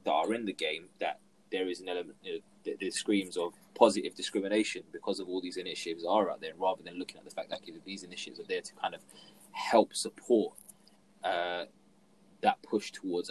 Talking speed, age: 195 wpm, 20-39